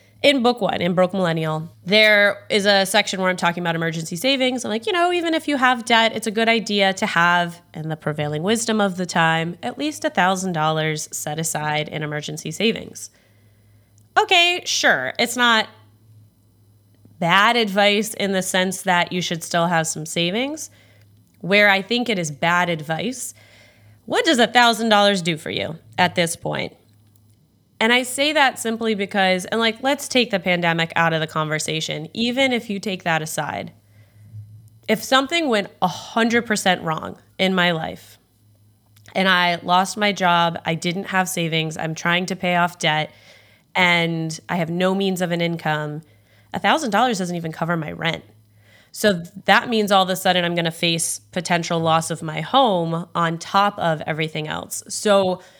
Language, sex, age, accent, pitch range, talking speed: English, female, 20-39, American, 155-205 Hz, 175 wpm